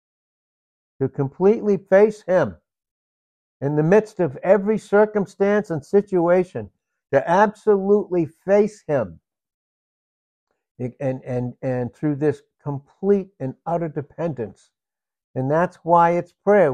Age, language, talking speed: 60-79, English, 110 wpm